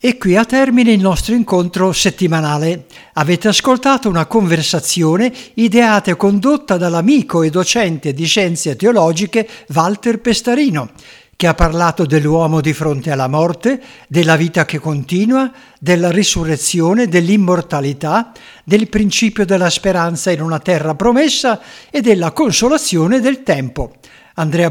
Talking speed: 125 wpm